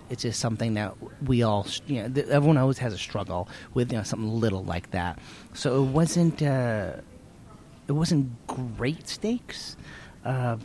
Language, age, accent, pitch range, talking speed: English, 30-49, American, 95-125 Hz, 165 wpm